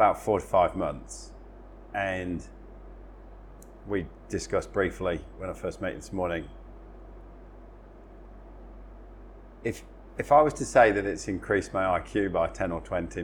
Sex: male